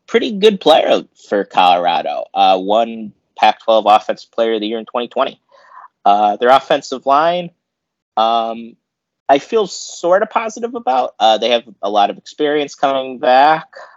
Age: 30-49